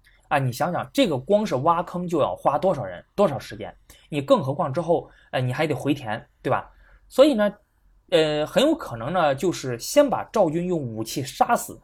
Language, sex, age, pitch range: Chinese, male, 20-39, 125-180 Hz